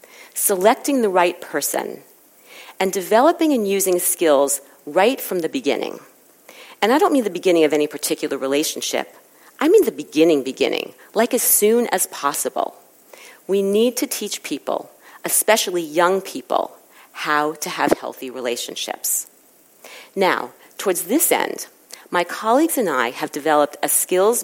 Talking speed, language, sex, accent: 140 wpm, English, female, American